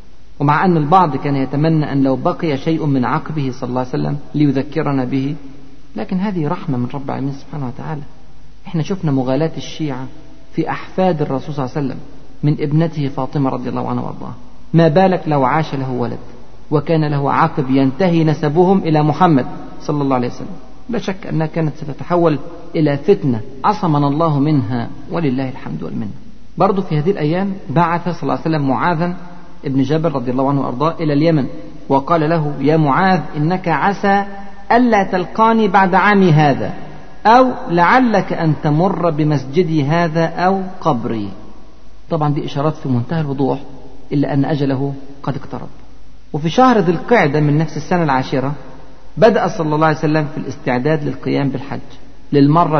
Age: 50-69